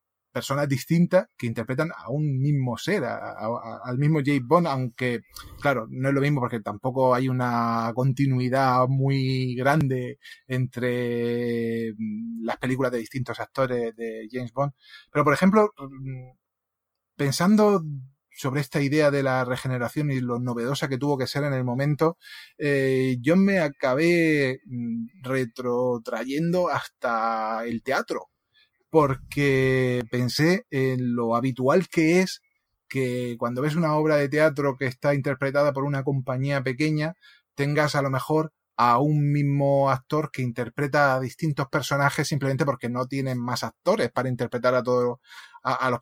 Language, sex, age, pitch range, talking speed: English, male, 30-49, 125-145 Hz, 140 wpm